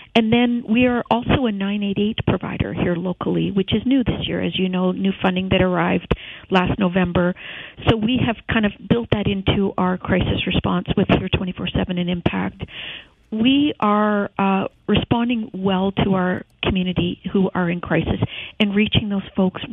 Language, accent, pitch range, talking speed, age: English, American, 185-220 Hz, 170 wpm, 50-69